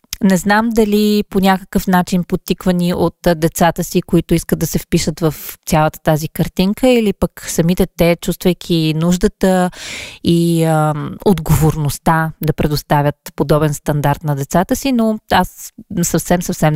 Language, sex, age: Bulgarian, female, 20-39